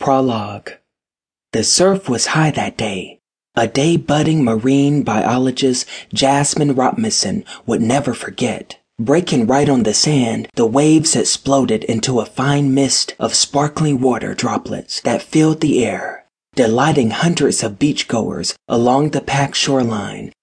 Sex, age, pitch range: male, 30-49, 120-155 Hz